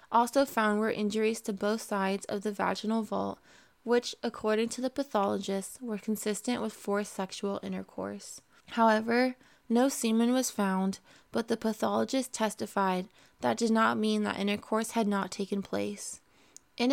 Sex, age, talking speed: female, 20-39, 150 wpm